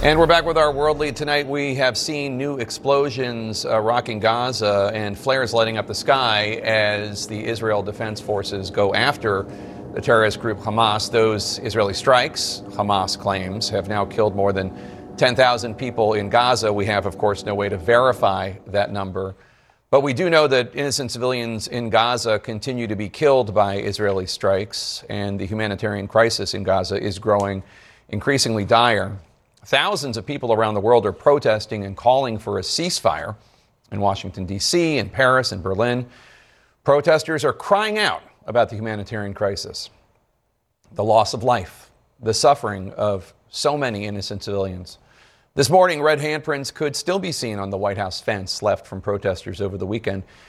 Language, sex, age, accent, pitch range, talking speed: English, male, 40-59, American, 100-135 Hz, 170 wpm